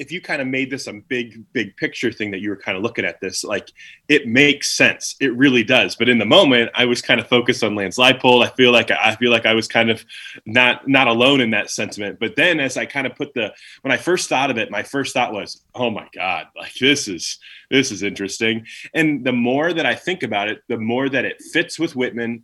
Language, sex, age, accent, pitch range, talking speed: English, male, 20-39, American, 110-135 Hz, 260 wpm